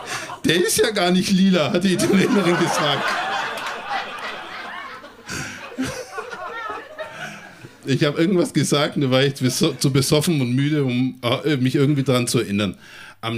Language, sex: German, male